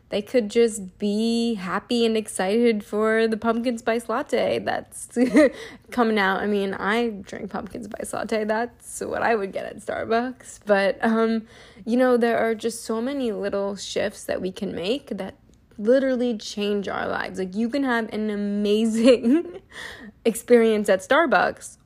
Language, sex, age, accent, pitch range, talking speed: English, female, 20-39, American, 200-235 Hz, 160 wpm